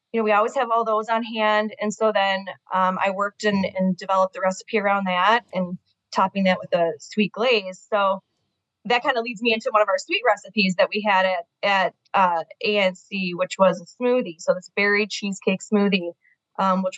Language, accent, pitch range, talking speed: English, American, 190-235 Hz, 205 wpm